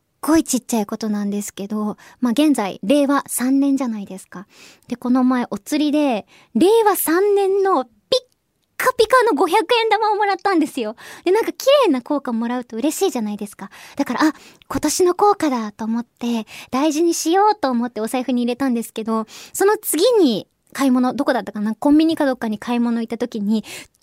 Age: 20-39